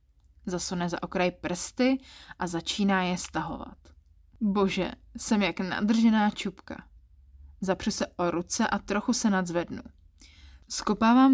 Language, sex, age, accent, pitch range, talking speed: Czech, female, 20-39, native, 170-215 Hz, 115 wpm